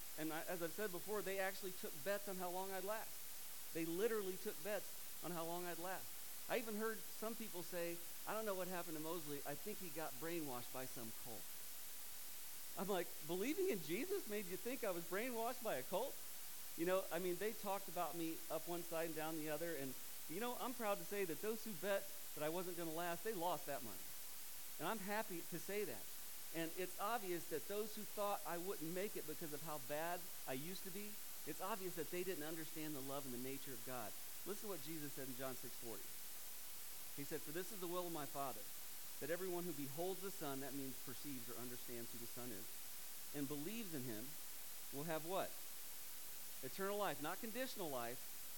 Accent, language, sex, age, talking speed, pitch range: American, English, male, 40-59, 220 wpm, 150-200 Hz